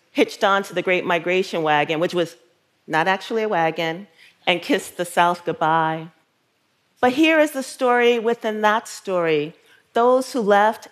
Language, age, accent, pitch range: Korean, 40-59, American, 175-220 Hz